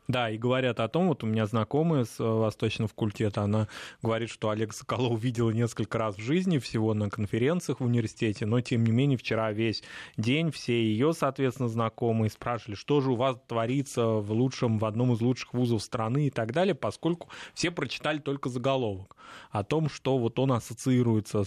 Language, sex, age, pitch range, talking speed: Russian, male, 20-39, 110-130 Hz, 185 wpm